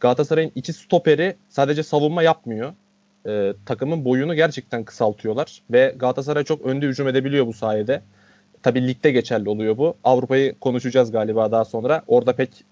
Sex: male